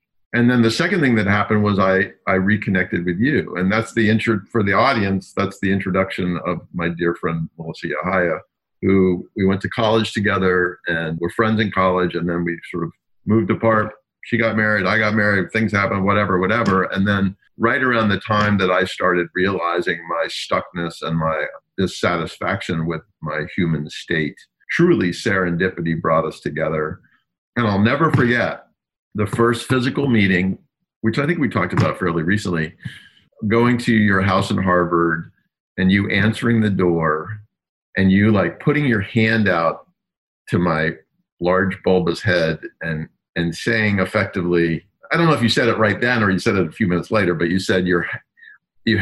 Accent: American